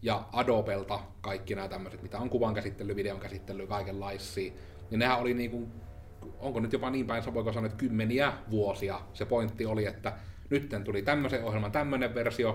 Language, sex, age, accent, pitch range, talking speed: Finnish, male, 30-49, native, 95-115 Hz, 170 wpm